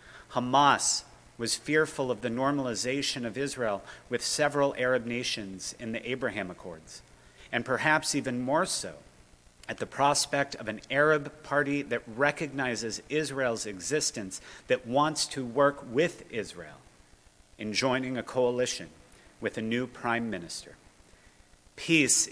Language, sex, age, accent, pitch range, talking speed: English, male, 40-59, American, 110-145 Hz, 130 wpm